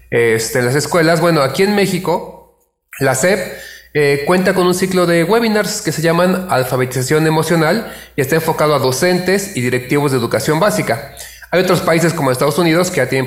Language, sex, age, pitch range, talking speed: Spanish, male, 30-49, 130-170 Hz, 175 wpm